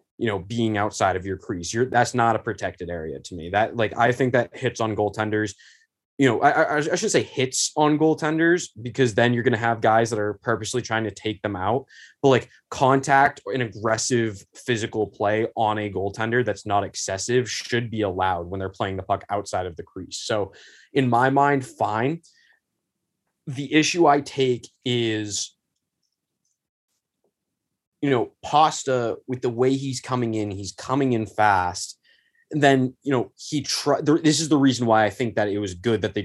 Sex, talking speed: male, 195 wpm